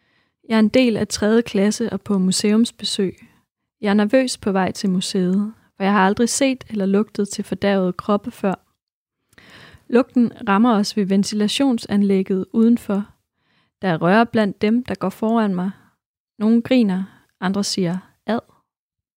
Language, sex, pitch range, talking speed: Danish, female, 195-230 Hz, 150 wpm